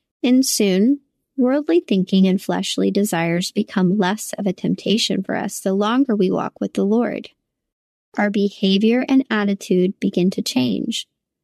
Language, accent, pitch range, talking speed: English, American, 195-230 Hz, 145 wpm